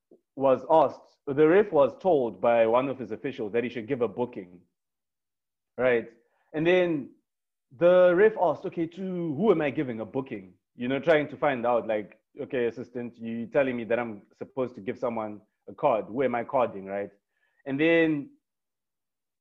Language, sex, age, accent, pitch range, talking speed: English, male, 30-49, South African, 115-155 Hz, 180 wpm